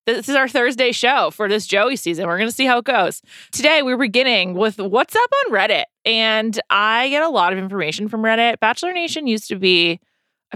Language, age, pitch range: English, 20-39, 175-245 Hz